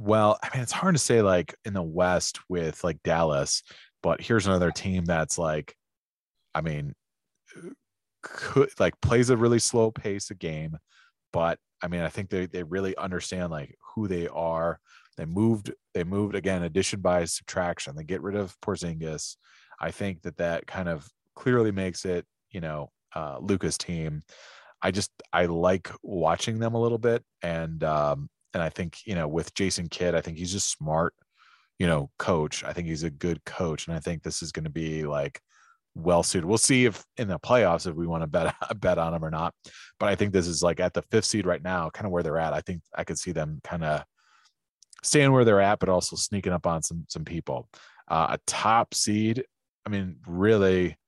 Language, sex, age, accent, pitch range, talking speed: English, male, 30-49, American, 80-100 Hz, 205 wpm